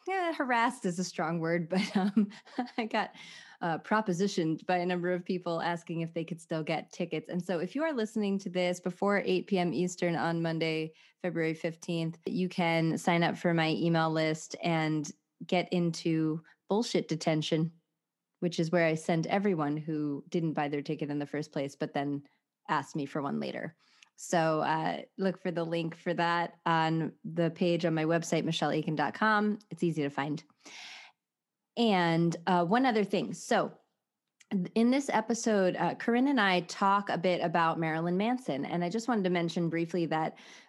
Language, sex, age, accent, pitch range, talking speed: English, female, 20-39, American, 165-195 Hz, 180 wpm